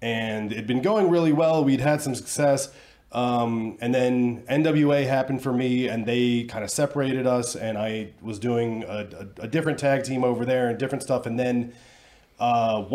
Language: English